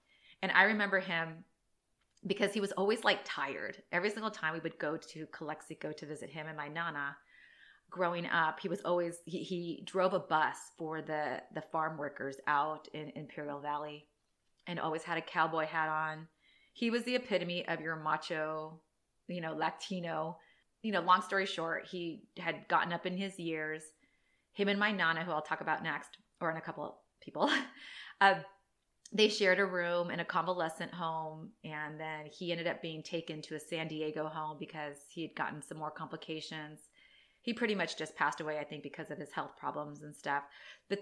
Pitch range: 155-185 Hz